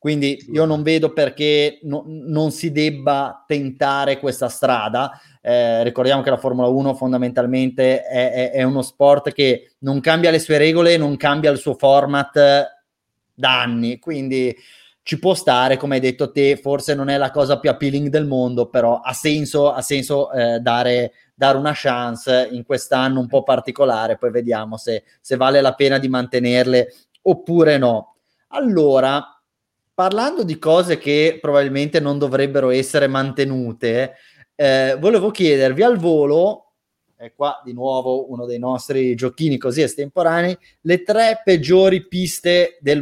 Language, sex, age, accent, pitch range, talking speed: Italian, male, 30-49, native, 130-160 Hz, 150 wpm